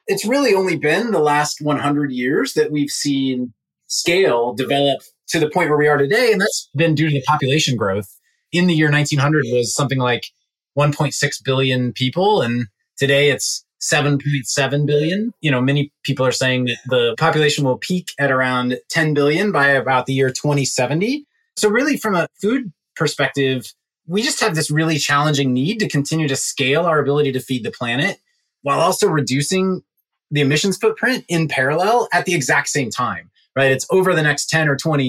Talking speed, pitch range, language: 185 wpm, 130-160 Hz, English